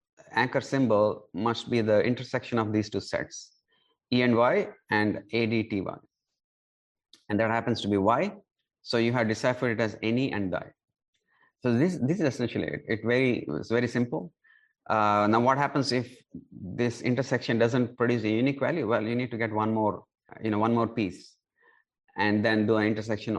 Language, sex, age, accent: English, male, 30-49, Indian